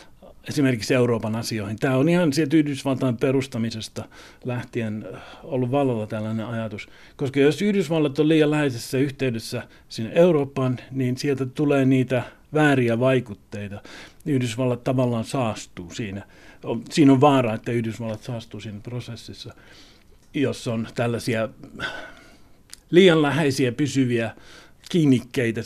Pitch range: 115-140 Hz